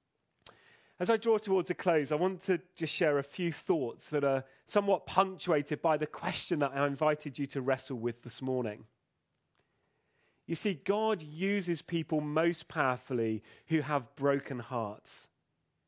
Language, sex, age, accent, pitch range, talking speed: English, male, 30-49, British, 145-190 Hz, 155 wpm